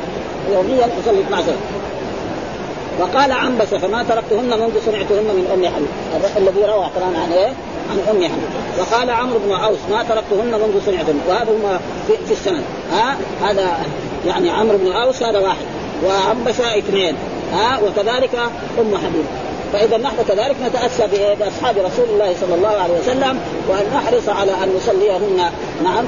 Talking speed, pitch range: 130 wpm, 195-255 Hz